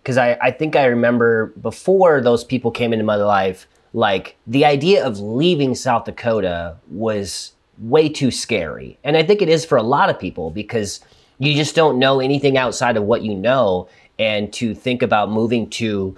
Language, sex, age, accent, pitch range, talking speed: English, male, 30-49, American, 100-125 Hz, 190 wpm